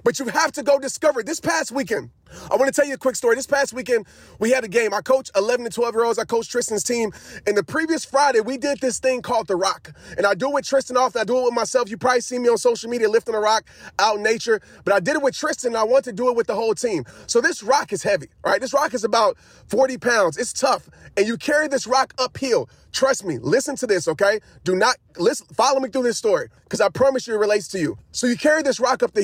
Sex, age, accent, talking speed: male, 30-49, American, 275 wpm